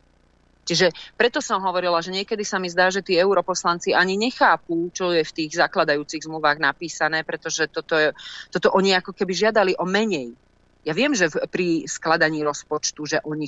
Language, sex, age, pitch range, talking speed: Slovak, female, 30-49, 125-175 Hz, 180 wpm